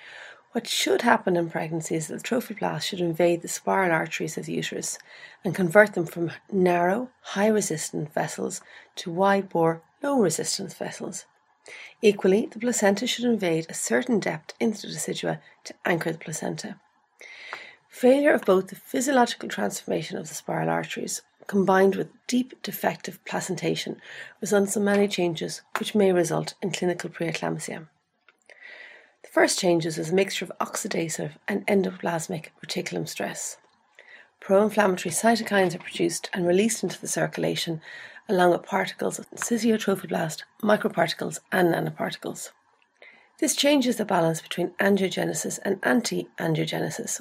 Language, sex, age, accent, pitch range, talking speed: English, female, 40-59, Irish, 170-220 Hz, 135 wpm